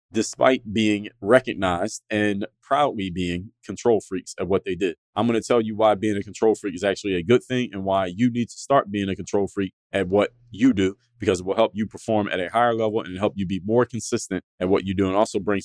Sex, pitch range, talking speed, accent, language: male, 95-120 Hz, 245 wpm, American, English